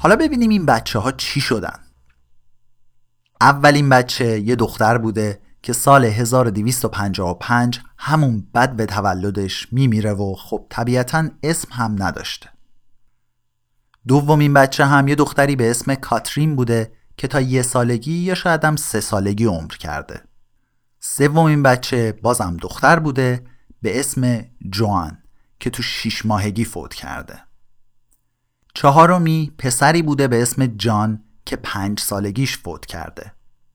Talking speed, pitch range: 125 wpm, 110-140 Hz